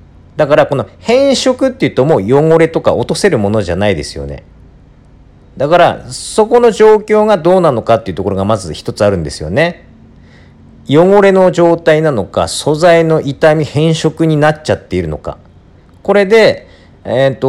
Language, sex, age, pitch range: Japanese, male, 40-59, 100-170 Hz